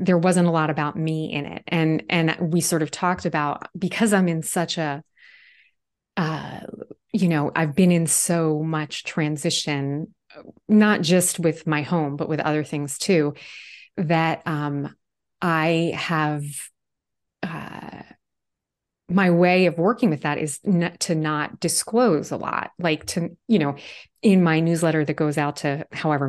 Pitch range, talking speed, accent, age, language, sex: 150-175 Hz, 160 wpm, American, 30-49, English, female